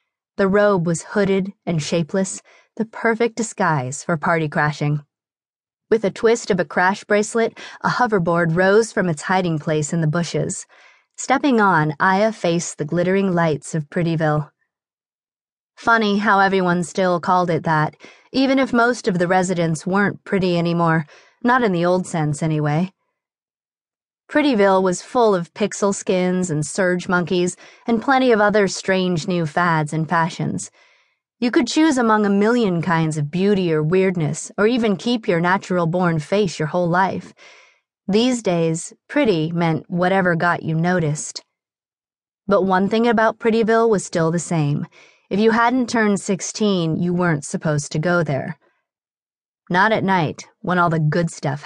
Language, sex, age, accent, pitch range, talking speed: English, female, 30-49, American, 165-210 Hz, 155 wpm